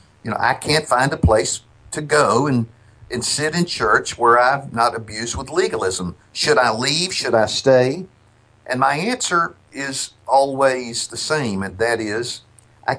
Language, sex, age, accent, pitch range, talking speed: English, male, 50-69, American, 110-140 Hz, 170 wpm